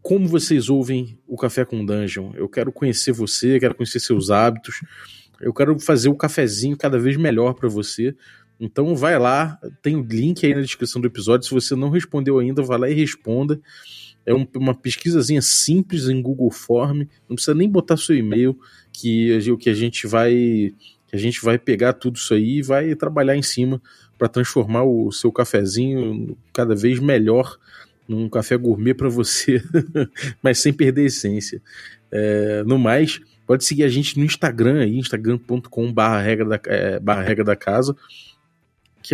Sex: male